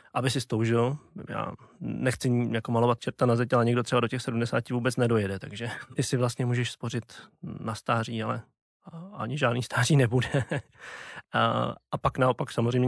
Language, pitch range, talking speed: Slovak, 115-130 Hz, 165 wpm